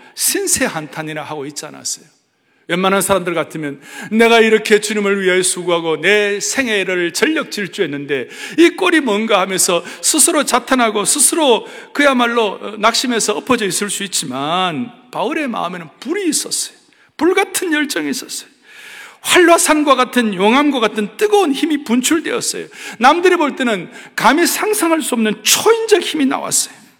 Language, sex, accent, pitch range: Korean, male, native, 195-300 Hz